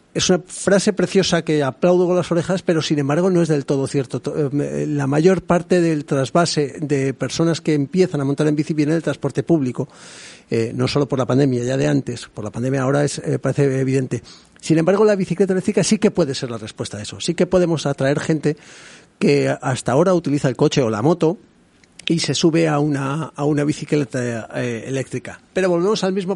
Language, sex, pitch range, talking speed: Spanish, male, 130-165 Hz, 205 wpm